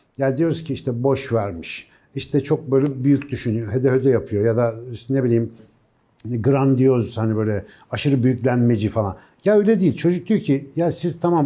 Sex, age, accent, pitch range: male, 60-79, native, 115-160 Hz